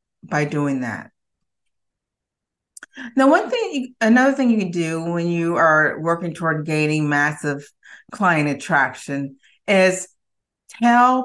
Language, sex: English, female